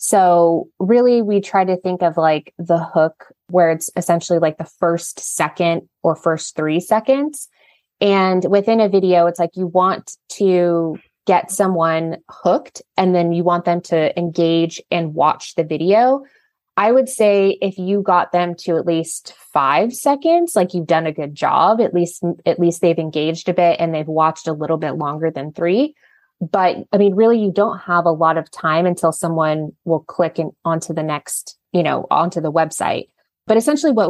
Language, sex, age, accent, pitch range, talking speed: English, female, 20-39, American, 165-195 Hz, 185 wpm